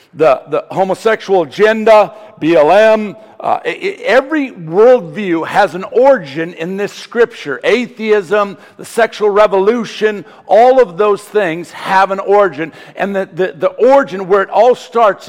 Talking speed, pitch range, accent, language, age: 135 wpm, 145-215 Hz, American, English, 50-69